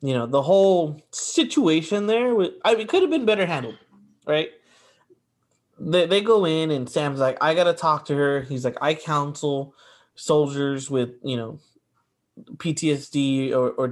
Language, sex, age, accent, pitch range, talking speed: English, male, 20-39, American, 130-175 Hz, 170 wpm